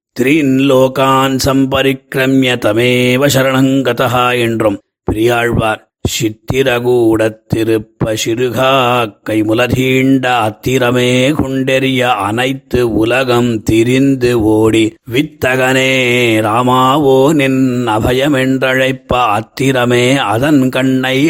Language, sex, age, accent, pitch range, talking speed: Tamil, male, 30-49, native, 115-135 Hz, 60 wpm